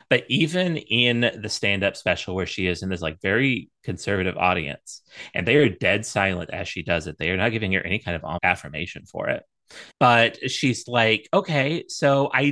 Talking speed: 200 wpm